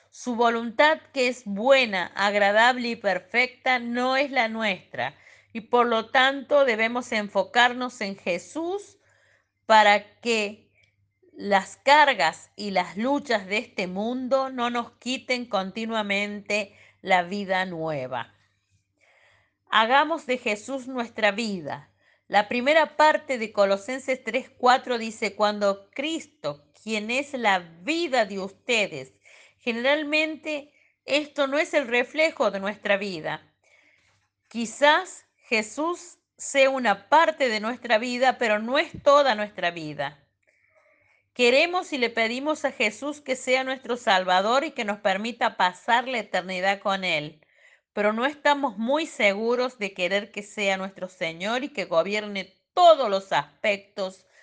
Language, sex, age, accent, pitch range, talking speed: Spanish, female, 40-59, American, 195-260 Hz, 130 wpm